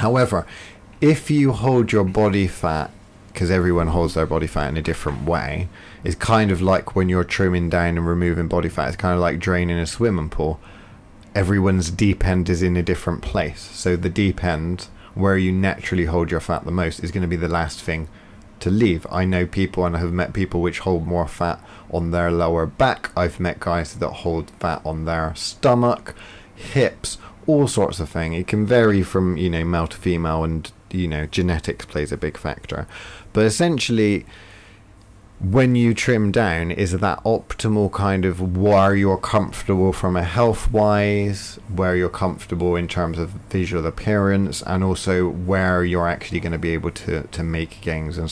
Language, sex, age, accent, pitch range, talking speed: English, male, 30-49, British, 85-105 Hz, 190 wpm